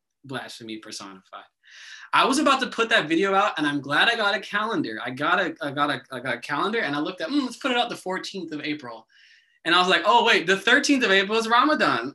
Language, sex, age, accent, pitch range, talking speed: English, male, 20-39, American, 125-200 Hz, 255 wpm